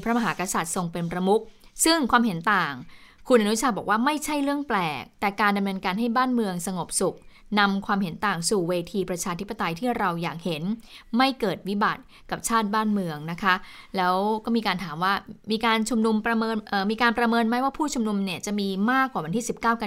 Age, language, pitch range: 20-39, Thai, 185-235 Hz